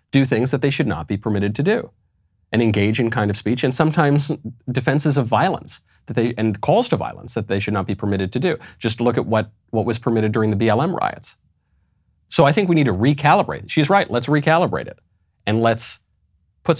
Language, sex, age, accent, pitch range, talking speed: English, male, 40-59, American, 95-140 Hz, 220 wpm